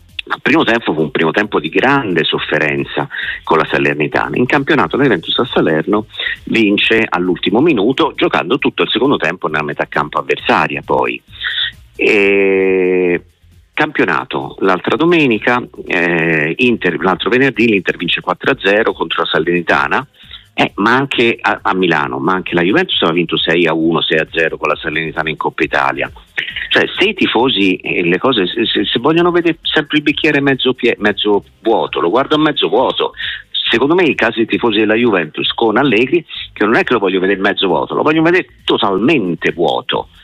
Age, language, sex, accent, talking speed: 50-69, Italian, male, native, 175 wpm